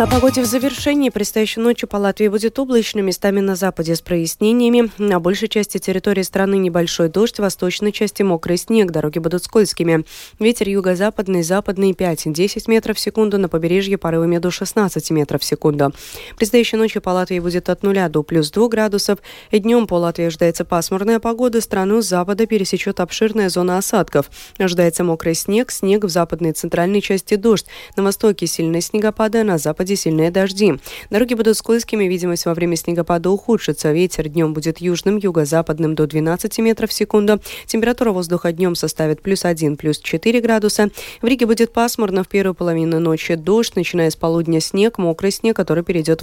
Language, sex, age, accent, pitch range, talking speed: Russian, female, 20-39, native, 170-215 Hz, 170 wpm